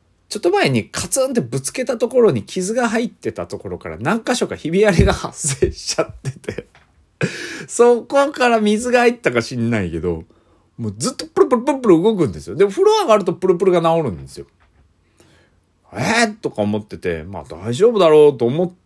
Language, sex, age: Japanese, male, 40-59